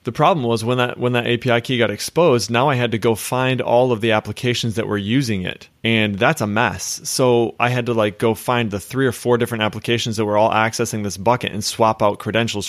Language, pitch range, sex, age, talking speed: English, 105-125 Hz, male, 20-39, 245 wpm